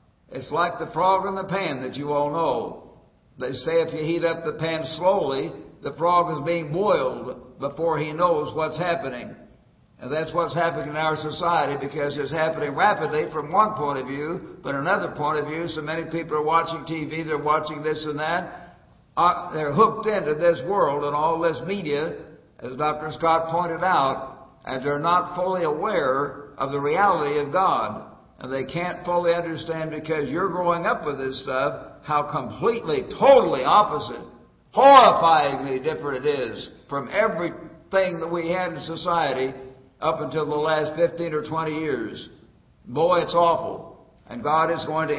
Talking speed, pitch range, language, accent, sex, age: 170 wpm, 145-170 Hz, English, American, male, 60-79